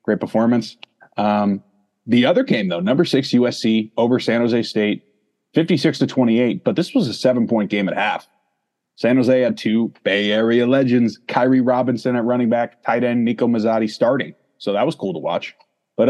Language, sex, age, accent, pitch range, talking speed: English, male, 30-49, American, 105-140 Hz, 185 wpm